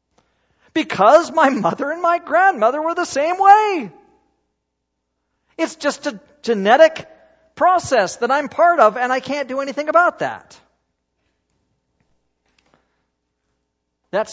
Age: 40-59